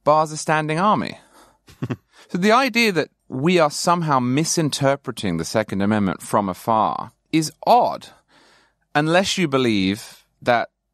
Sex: male